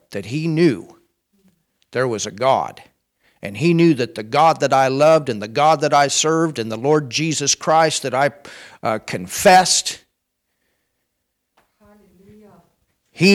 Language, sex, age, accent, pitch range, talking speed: German, male, 50-69, American, 135-195 Hz, 145 wpm